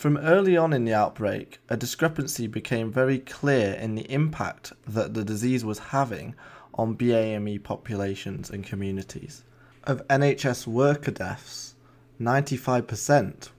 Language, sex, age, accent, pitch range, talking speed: English, male, 20-39, British, 110-140 Hz, 130 wpm